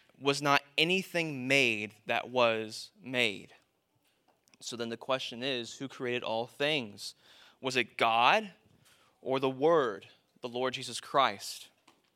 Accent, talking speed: American, 130 wpm